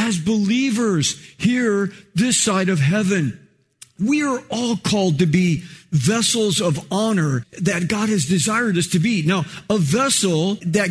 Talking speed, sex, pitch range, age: 150 wpm, male, 165-220 Hz, 50-69